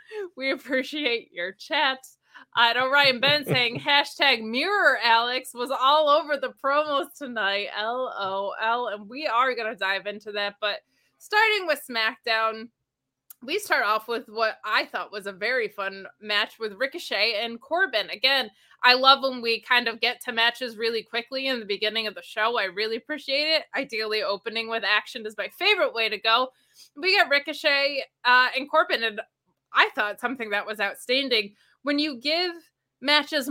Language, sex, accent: English, female, American